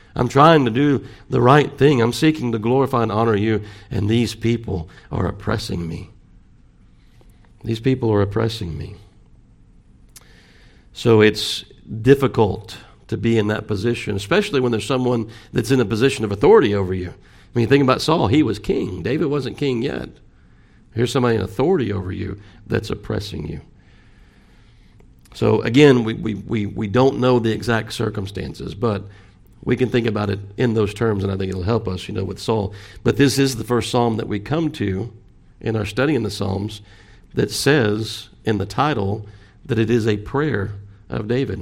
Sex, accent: male, American